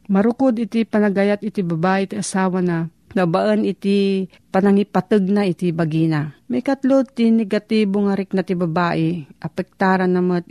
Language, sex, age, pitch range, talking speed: Filipino, female, 40-59, 180-215 Hz, 135 wpm